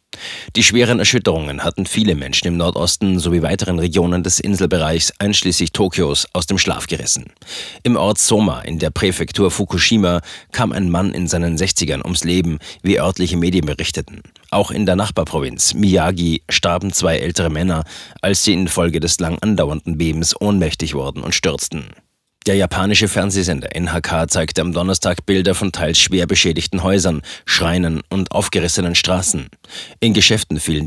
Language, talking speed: German, 150 wpm